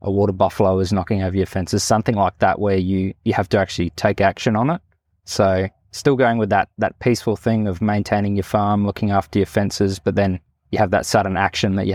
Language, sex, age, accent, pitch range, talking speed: English, male, 20-39, Australian, 95-105 Hz, 230 wpm